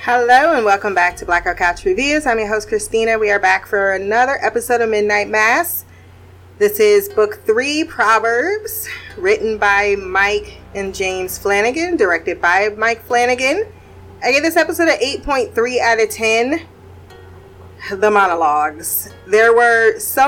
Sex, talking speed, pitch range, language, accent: female, 150 wpm, 205-275 Hz, English, American